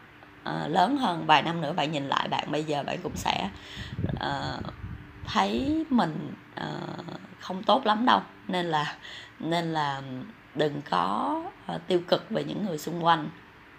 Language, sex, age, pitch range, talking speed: Vietnamese, female, 20-39, 145-185 Hz, 155 wpm